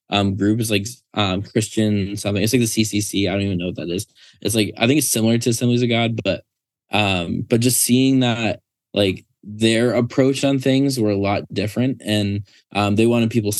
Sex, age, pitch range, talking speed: male, 10-29, 100-115 Hz, 210 wpm